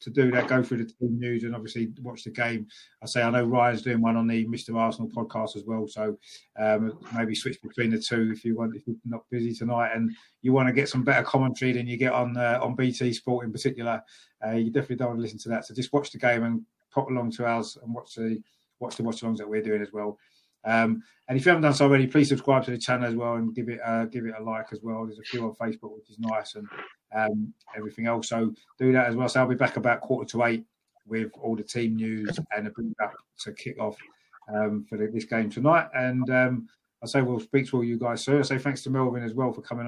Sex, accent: male, British